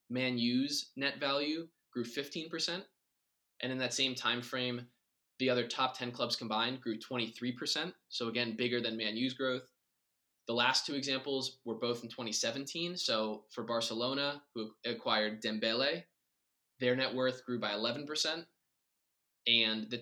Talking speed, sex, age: 145 wpm, male, 20-39